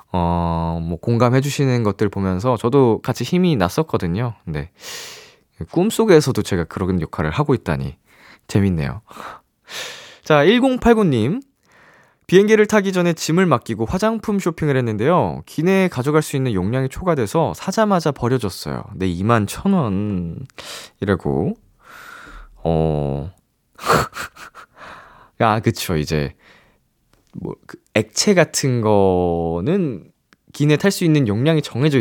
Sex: male